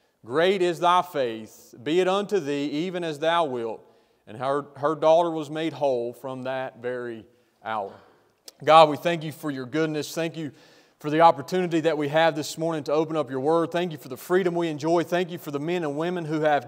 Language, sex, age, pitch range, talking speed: English, male, 40-59, 145-170 Hz, 220 wpm